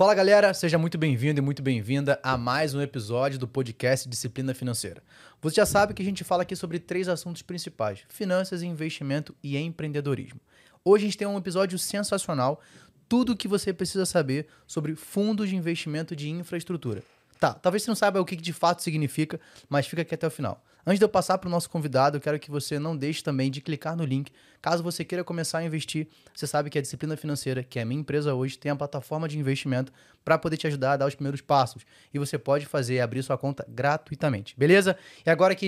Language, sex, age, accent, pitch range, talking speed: Portuguese, male, 20-39, Brazilian, 135-175 Hz, 220 wpm